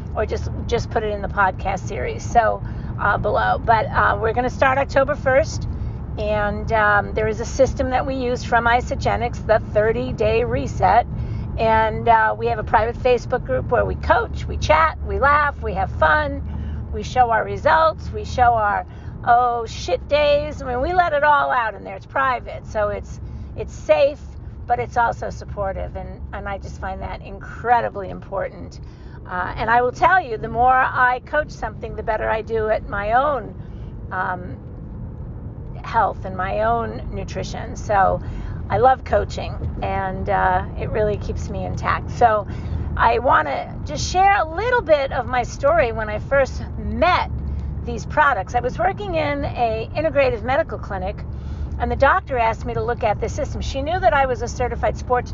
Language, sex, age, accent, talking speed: English, female, 50-69, American, 185 wpm